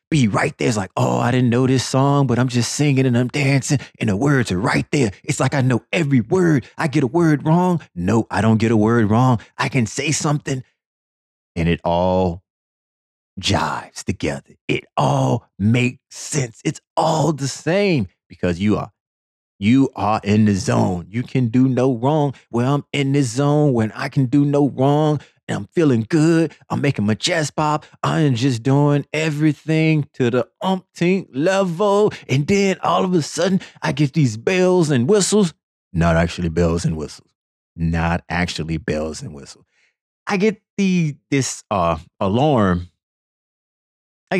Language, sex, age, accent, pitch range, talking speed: English, male, 30-49, American, 95-150 Hz, 175 wpm